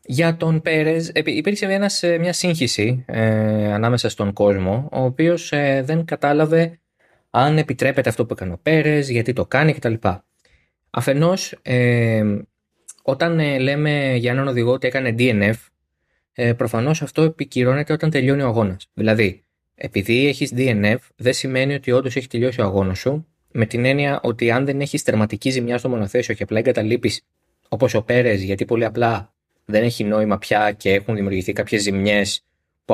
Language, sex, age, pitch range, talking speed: Greek, male, 20-39, 105-145 Hz, 150 wpm